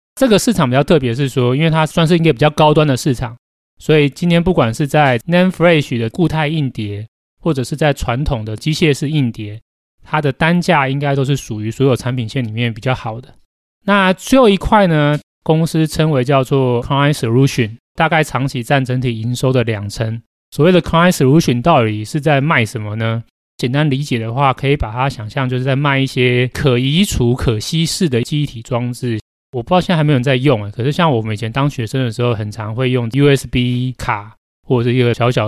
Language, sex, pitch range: Chinese, male, 115-150 Hz